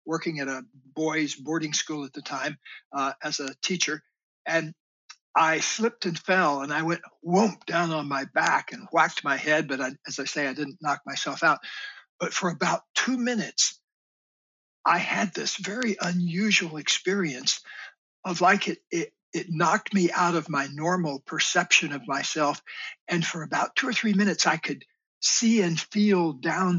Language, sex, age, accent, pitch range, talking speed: English, male, 60-79, American, 150-175 Hz, 175 wpm